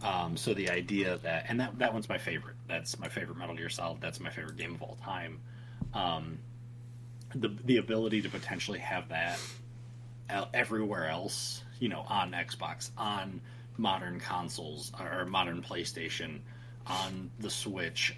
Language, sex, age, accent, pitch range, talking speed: English, male, 30-49, American, 115-125 Hz, 155 wpm